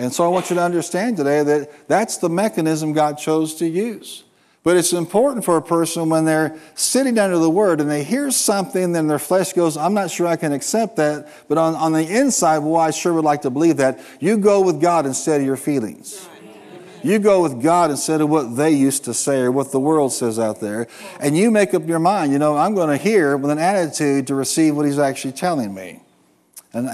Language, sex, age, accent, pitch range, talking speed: English, male, 50-69, American, 135-165 Hz, 235 wpm